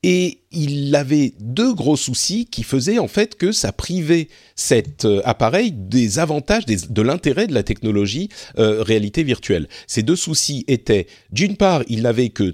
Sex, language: male, French